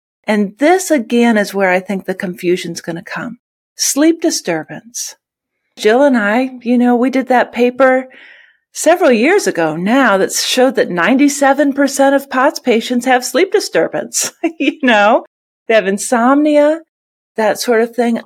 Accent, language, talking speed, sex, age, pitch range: American, English, 155 wpm, female, 50-69, 195-265 Hz